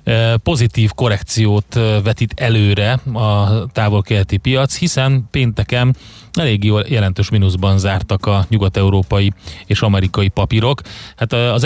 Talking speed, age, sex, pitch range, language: 105 wpm, 30-49, male, 100-115 Hz, Hungarian